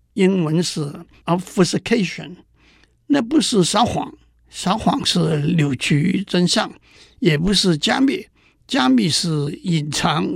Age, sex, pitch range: 60-79, male, 155-210 Hz